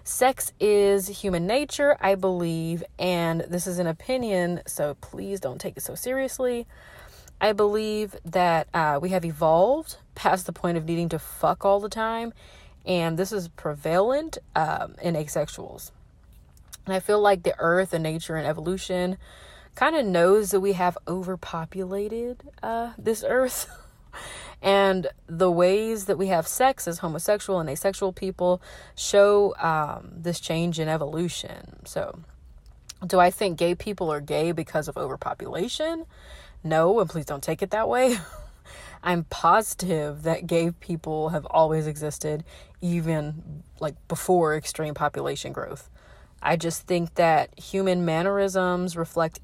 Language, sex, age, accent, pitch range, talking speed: English, female, 30-49, American, 160-195 Hz, 145 wpm